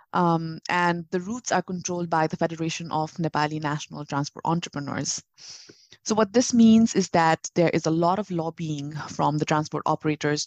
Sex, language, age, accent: female, English, 20-39, Indian